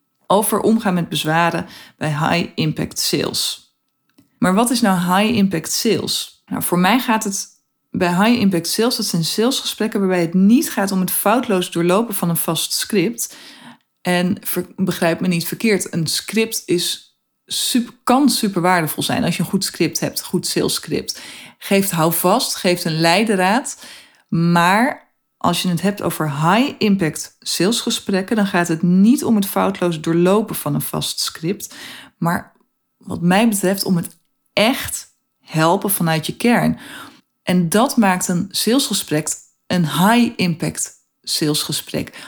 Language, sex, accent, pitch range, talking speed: Dutch, female, Dutch, 175-220 Hz, 155 wpm